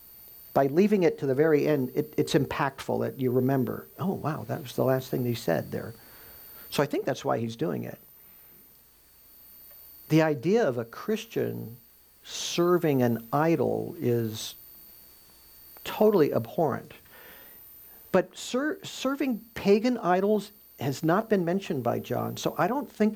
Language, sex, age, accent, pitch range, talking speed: English, male, 50-69, American, 120-175 Hz, 150 wpm